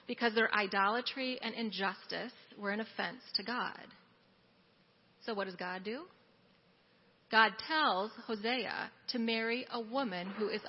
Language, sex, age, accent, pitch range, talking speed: English, female, 30-49, American, 210-250 Hz, 135 wpm